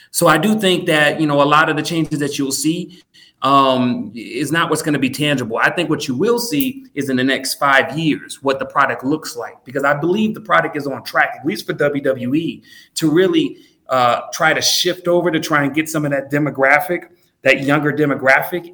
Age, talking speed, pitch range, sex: 30-49, 225 wpm, 145-195 Hz, male